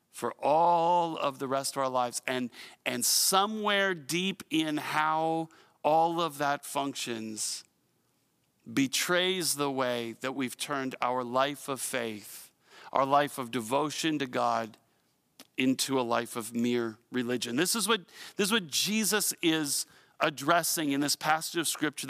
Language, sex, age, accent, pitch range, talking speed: English, male, 40-59, American, 140-200 Hz, 140 wpm